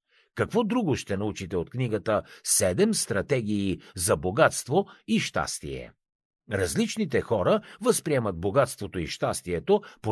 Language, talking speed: Bulgarian, 115 wpm